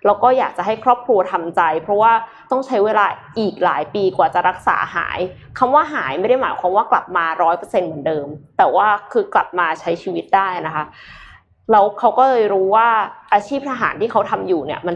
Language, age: Thai, 20-39